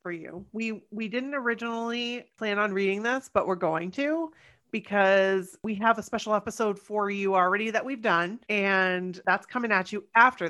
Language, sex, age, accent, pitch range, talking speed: English, female, 30-49, American, 180-230 Hz, 185 wpm